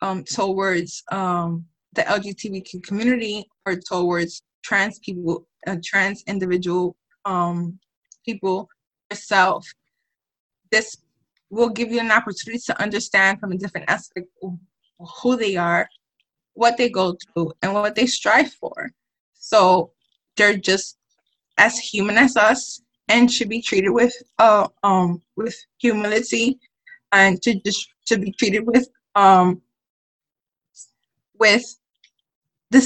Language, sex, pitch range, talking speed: English, female, 180-235 Hz, 120 wpm